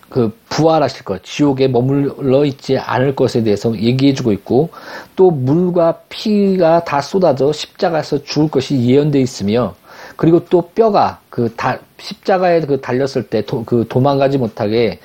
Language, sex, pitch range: Korean, male, 130-180 Hz